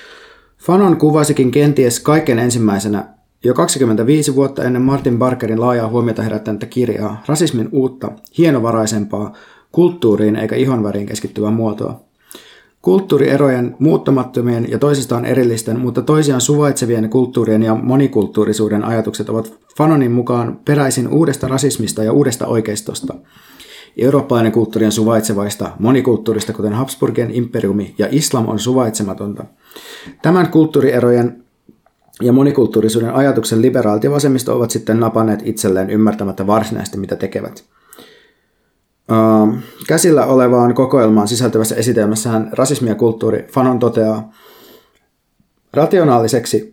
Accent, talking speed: native, 105 wpm